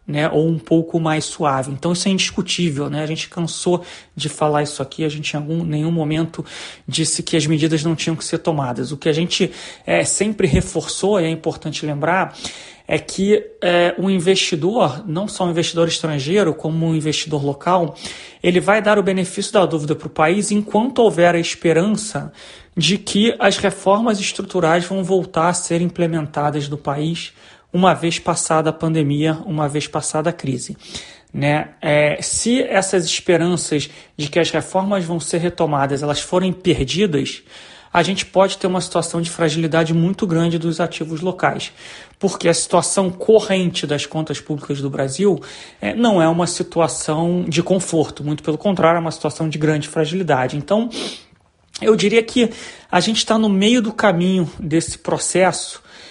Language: Portuguese